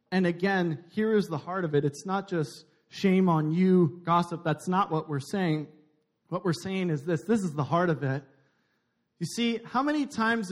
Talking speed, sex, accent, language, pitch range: 205 wpm, male, American, English, 155-195 Hz